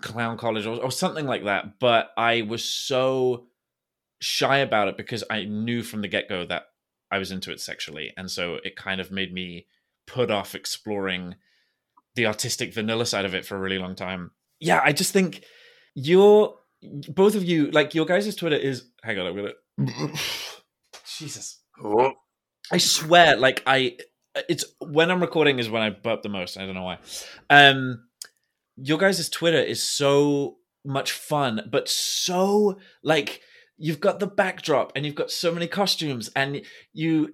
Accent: British